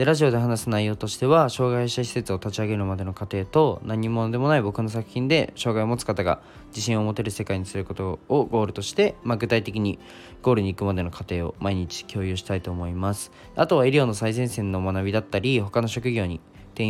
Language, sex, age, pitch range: Japanese, male, 20-39, 95-120 Hz